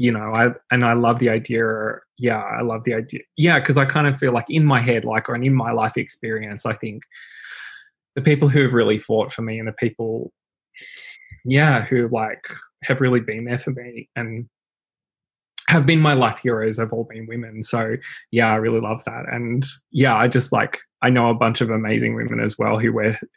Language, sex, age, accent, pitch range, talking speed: English, male, 20-39, Australian, 115-130 Hz, 210 wpm